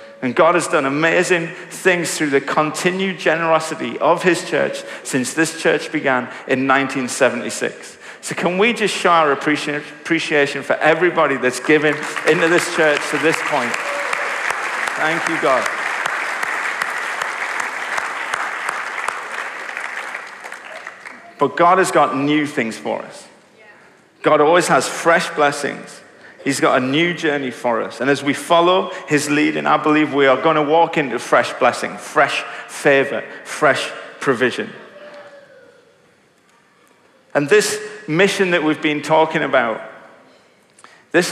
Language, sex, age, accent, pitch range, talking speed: English, male, 50-69, British, 145-180 Hz, 130 wpm